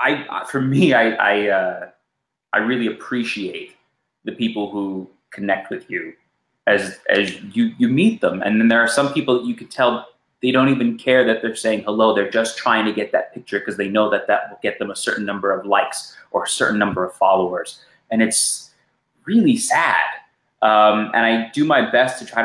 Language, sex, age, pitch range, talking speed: English, male, 30-49, 105-135 Hz, 205 wpm